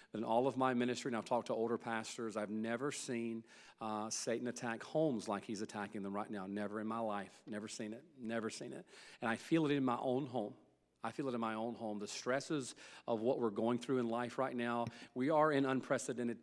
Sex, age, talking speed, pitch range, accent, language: male, 40-59, 235 wpm, 110-125 Hz, American, English